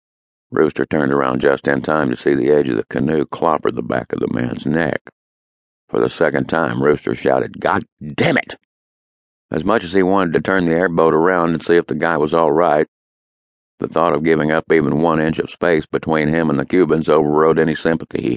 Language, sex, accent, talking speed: English, male, American, 215 wpm